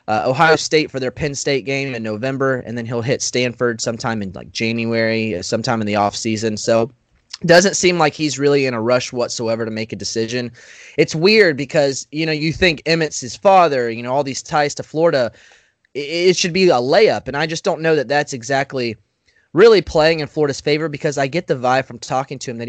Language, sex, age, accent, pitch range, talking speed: English, male, 20-39, American, 115-150 Hz, 220 wpm